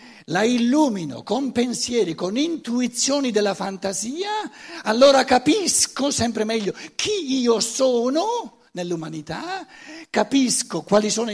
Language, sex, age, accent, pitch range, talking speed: Italian, male, 60-79, native, 155-255 Hz, 100 wpm